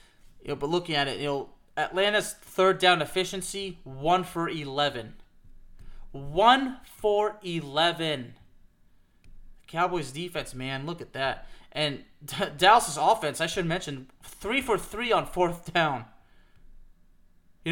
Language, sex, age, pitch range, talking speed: English, male, 20-39, 135-175 Hz, 130 wpm